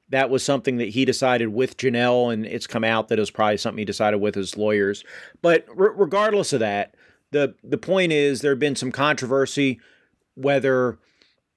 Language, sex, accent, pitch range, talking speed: English, male, American, 115-135 Hz, 190 wpm